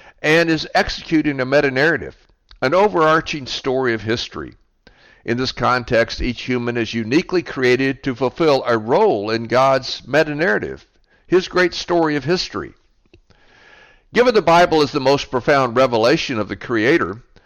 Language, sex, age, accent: English, male, 60-79, American